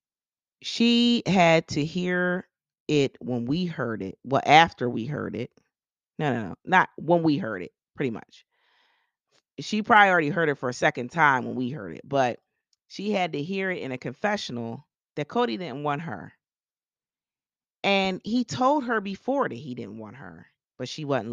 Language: English